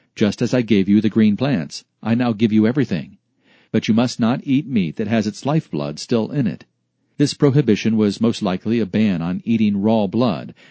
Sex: male